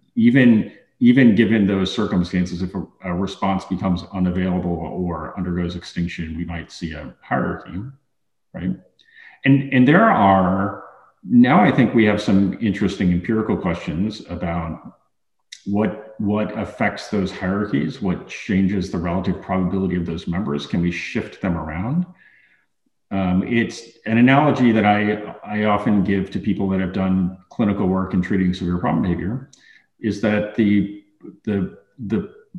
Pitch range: 90-105 Hz